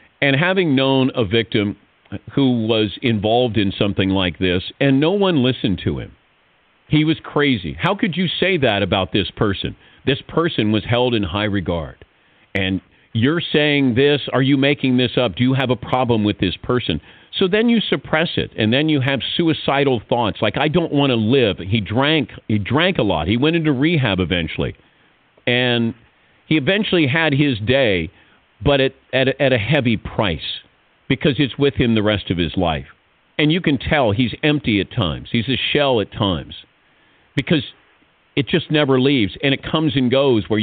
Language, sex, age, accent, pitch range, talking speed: English, male, 50-69, American, 105-145 Hz, 190 wpm